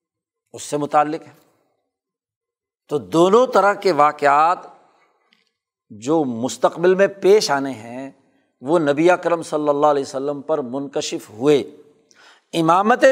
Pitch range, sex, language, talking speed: 150-240 Hz, male, Urdu, 120 wpm